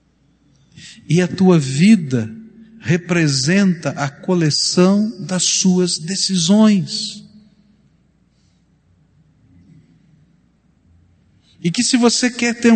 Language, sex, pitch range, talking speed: Portuguese, male, 155-220 Hz, 75 wpm